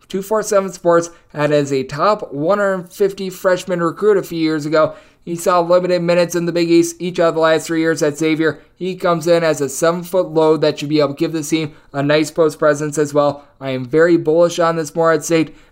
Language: English